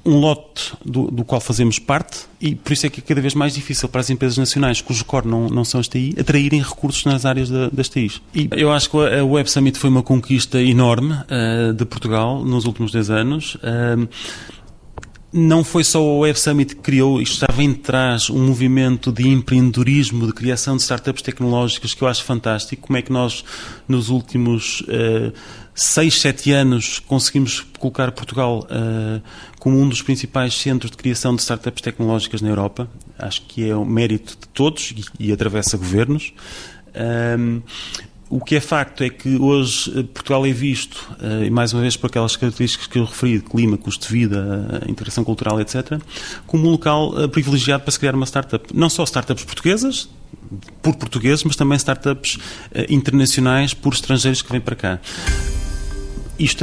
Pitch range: 115-140 Hz